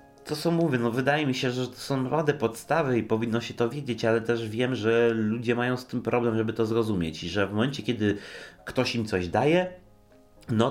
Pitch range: 95-125 Hz